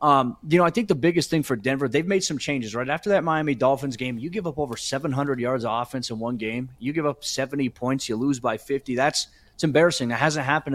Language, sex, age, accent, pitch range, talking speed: English, male, 30-49, American, 125-150 Hz, 255 wpm